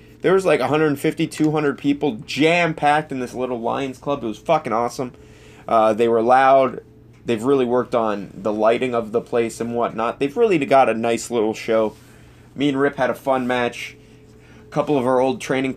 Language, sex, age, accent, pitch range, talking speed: English, male, 20-39, American, 110-130 Hz, 195 wpm